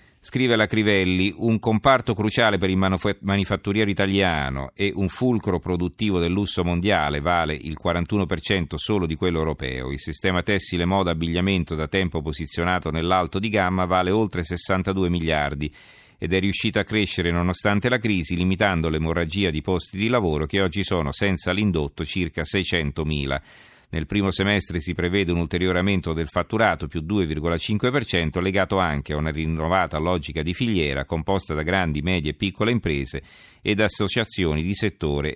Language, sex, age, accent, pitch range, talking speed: Italian, male, 40-59, native, 80-100 Hz, 155 wpm